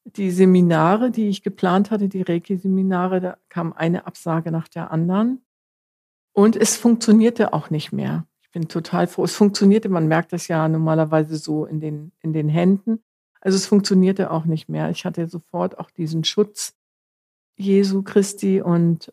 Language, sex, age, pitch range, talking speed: German, female, 50-69, 160-190 Hz, 165 wpm